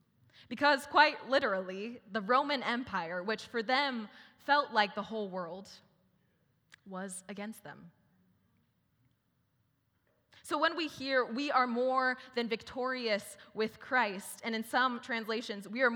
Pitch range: 185-255 Hz